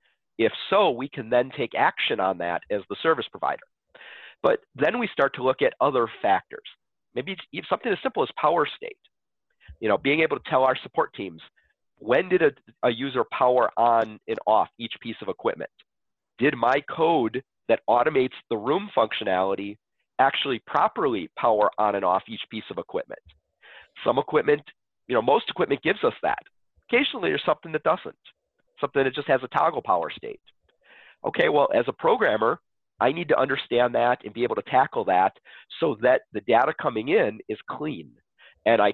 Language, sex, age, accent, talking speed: English, male, 40-59, American, 180 wpm